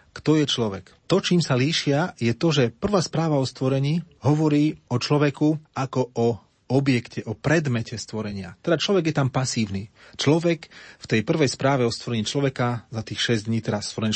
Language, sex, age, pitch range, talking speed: Slovak, male, 30-49, 110-135 Hz, 180 wpm